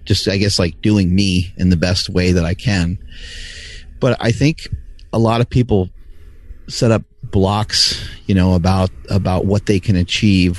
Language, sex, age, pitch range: English, male, 30-49, 85-105 Hz